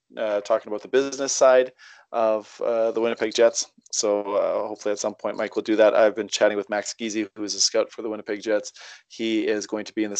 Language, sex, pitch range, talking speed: English, male, 105-115 Hz, 245 wpm